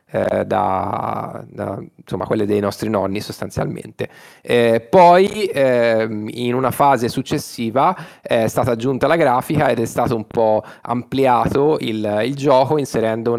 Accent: native